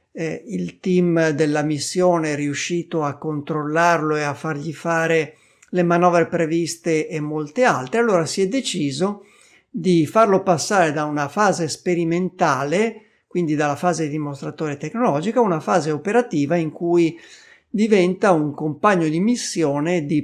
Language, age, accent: Italian, 50-69, native